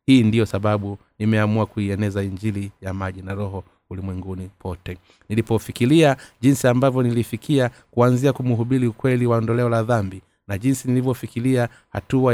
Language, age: Swahili, 30-49